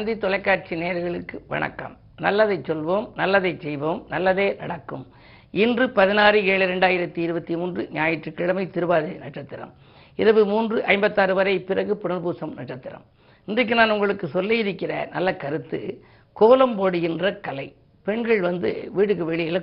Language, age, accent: Tamil, 50-69, native